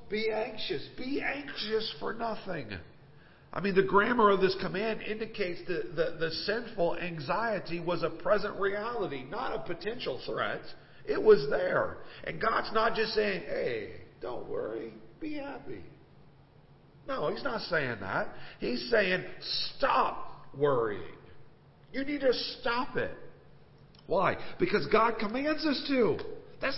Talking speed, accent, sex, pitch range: 135 wpm, American, male, 165-270 Hz